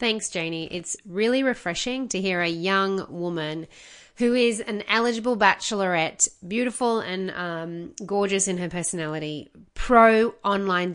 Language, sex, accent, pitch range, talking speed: English, female, Australian, 180-245 Hz, 125 wpm